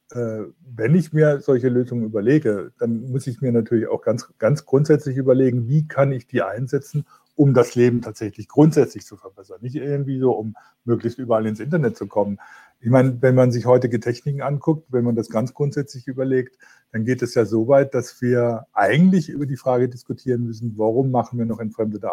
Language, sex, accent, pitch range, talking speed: German, male, German, 115-140 Hz, 195 wpm